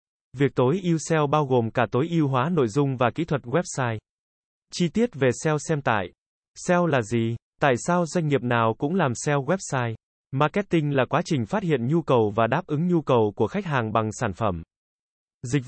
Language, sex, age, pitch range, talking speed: Vietnamese, male, 20-39, 120-160 Hz, 205 wpm